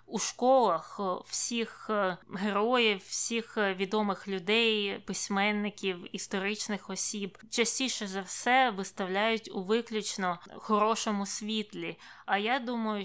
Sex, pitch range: female, 195-225 Hz